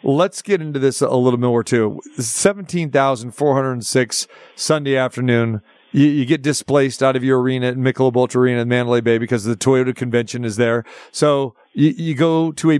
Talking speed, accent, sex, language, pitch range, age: 175 wpm, American, male, English, 130-155 Hz, 40-59